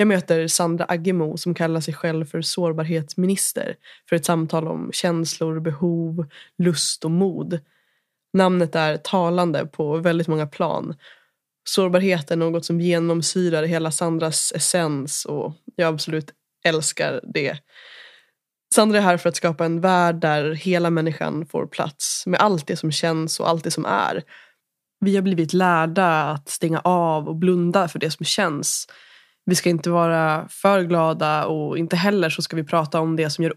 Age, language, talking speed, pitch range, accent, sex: 20-39, Swedish, 165 wpm, 160-180 Hz, native, female